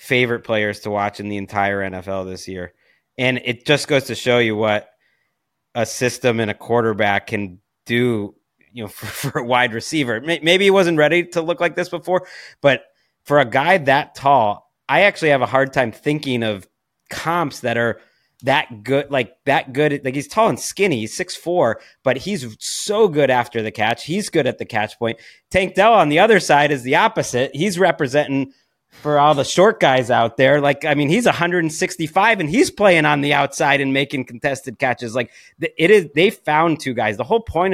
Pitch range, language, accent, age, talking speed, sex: 110-150 Hz, English, American, 30-49, 200 wpm, male